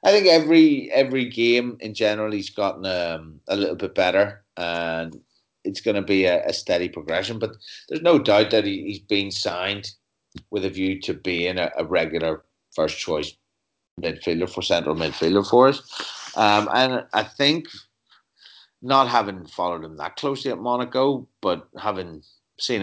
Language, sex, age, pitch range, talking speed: English, male, 30-49, 85-120 Hz, 165 wpm